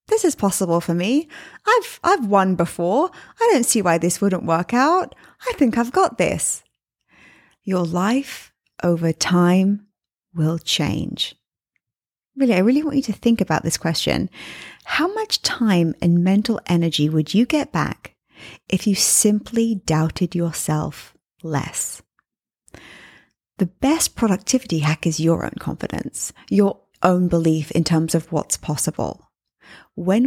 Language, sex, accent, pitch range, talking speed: English, female, British, 180-260 Hz, 140 wpm